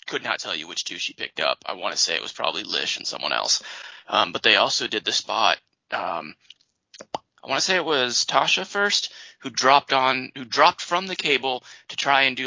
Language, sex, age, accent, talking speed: English, male, 20-39, American, 230 wpm